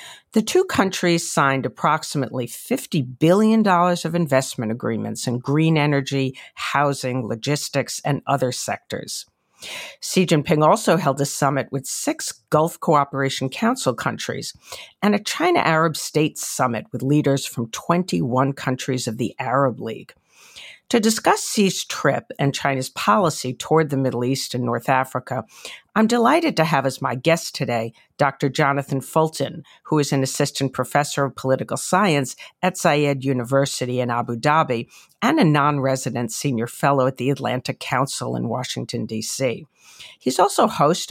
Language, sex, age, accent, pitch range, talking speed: English, female, 50-69, American, 130-160 Hz, 145 wpm